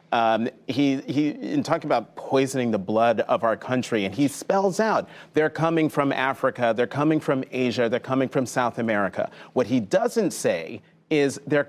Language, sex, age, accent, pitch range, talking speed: English, male, 30-49, American, 120-155 Hz, 180 wpm